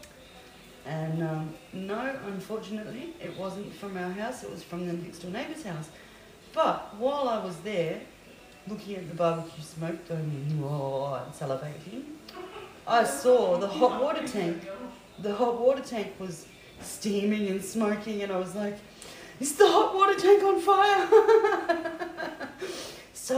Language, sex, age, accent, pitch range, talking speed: English, female, 30-49, Australian, 170-235 Hz, 145 wpm